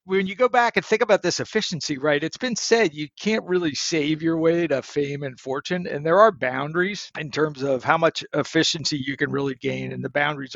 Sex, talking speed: male, 225 wpm